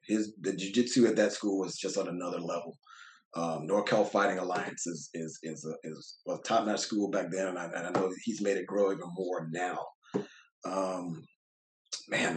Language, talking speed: English, 190 wpm